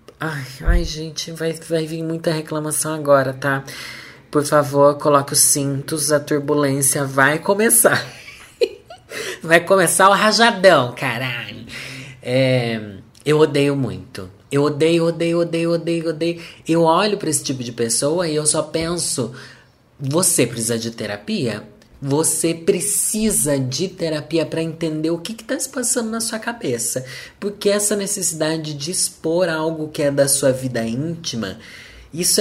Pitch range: 120-165 Hz